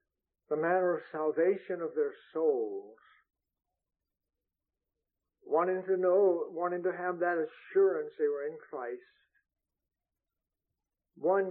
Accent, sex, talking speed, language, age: American, male, 105 wpm, English, 60-79